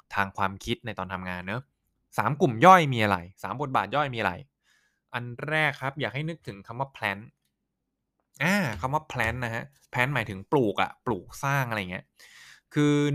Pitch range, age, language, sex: 110-145 Hz, 20-39, Thai, male